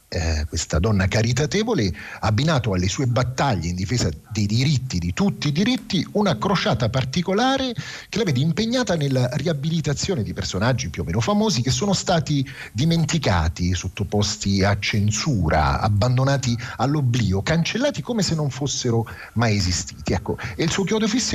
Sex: male